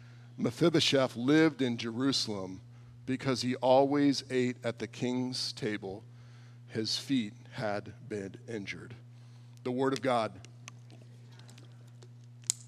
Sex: male